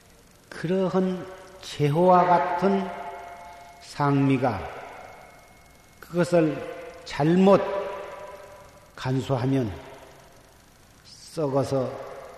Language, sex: Korean, male